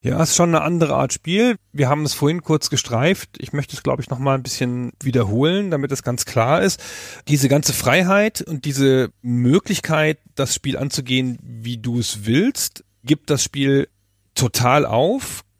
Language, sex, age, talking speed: German, male, 40-59, 180 wpm